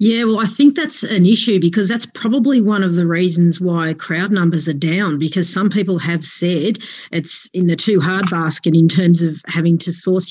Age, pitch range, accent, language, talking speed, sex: 40-59, 165-190 Hz, Australian, English, 210 wpm, female